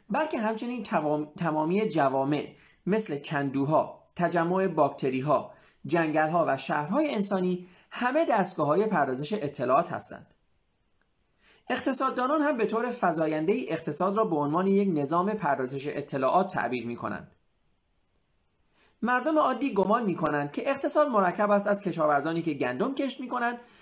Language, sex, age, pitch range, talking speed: Persian, male, 30-49, 145-215 Hz, 130 wpm